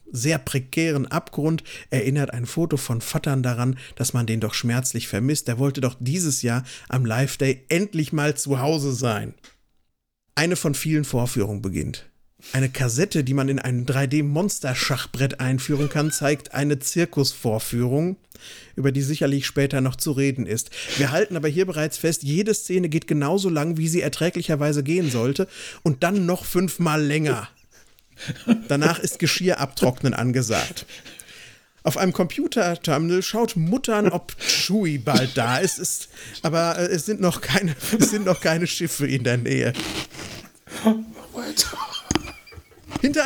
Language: German